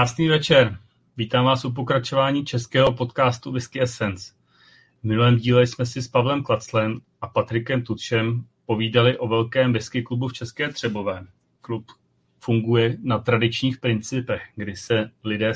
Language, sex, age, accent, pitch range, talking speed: Czech, male, 30-49, native, 115-130 Hz, 145 wpm